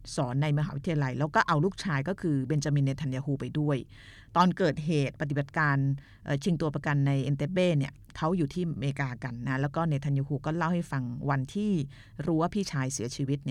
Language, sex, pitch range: Thai, female, 135-170 Hz